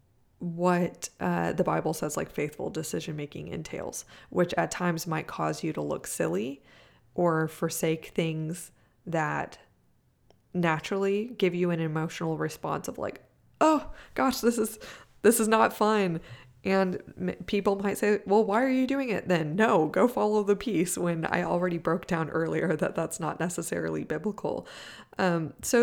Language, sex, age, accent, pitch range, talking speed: English, female, 20-39, American, 165-205 Hz, 160 wpm